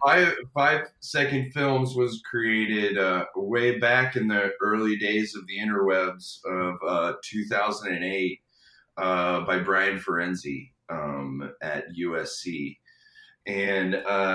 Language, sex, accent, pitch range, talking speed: English, male, American, 95-130 Hz, 115 wpm